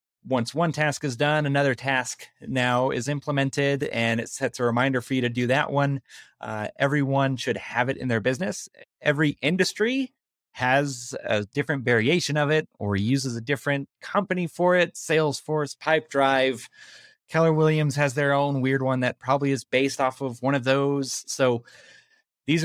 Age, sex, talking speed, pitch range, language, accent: 30-49, male, 170 wpm, 120-150 Hz, English, American